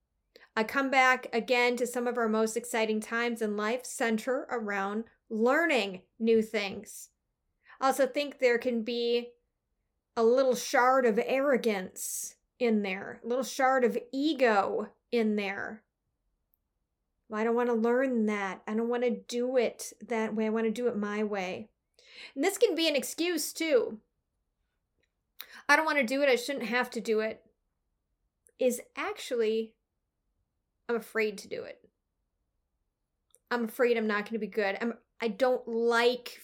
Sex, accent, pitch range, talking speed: female, American, 225-265 Hz, 160 wpm